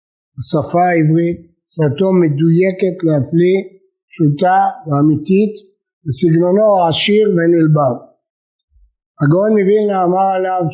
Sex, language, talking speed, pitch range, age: male, Hebrew, 80 wpm, 160-195 Hz, 50-69